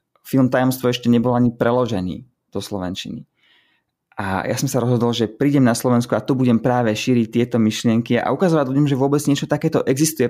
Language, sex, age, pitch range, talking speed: Slovak, male, 20-39, 105-125 Hz, 185 wpm